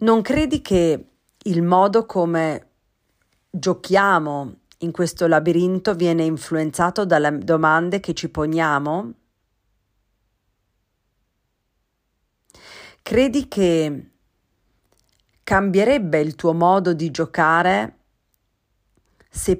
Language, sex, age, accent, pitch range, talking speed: Italian, female, 40-59, native, 145-180 Hz, 80 wpm